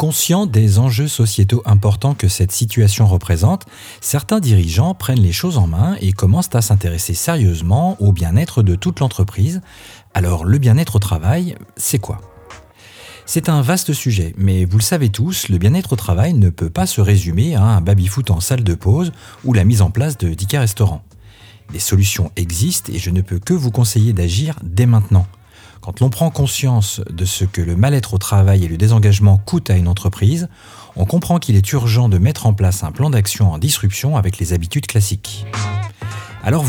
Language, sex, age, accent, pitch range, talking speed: French, male, 40-59, French, 95-125 Hz, 190 wpm